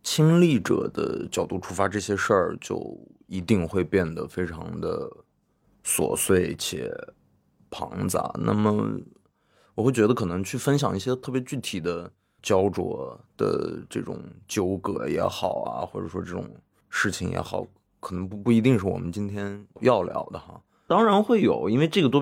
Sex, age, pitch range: male, 20-39, 90-130 Hz